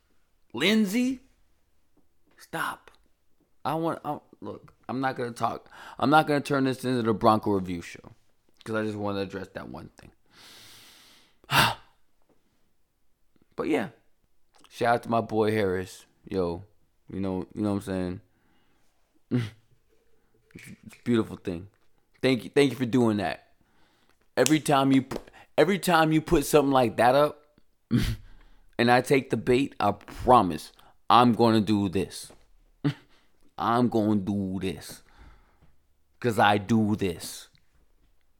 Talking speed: 140 wpm